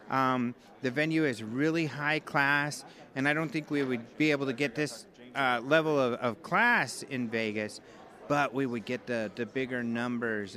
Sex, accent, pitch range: male, American, 120-150 Hz